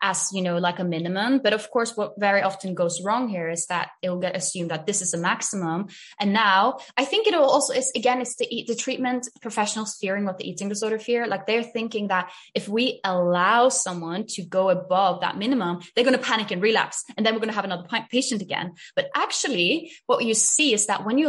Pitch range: 180-235 Hz